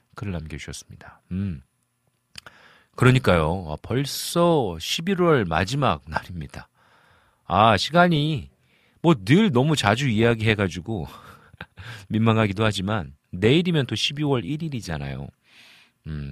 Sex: male